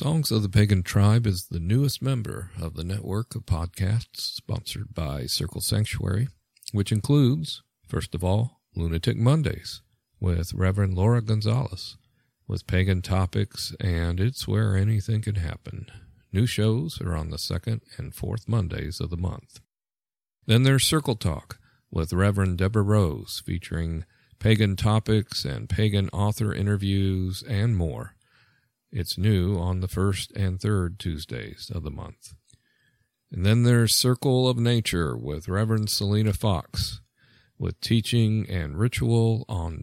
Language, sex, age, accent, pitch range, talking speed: English, male, 50-69, American, 95-115 Hz, 140 wpm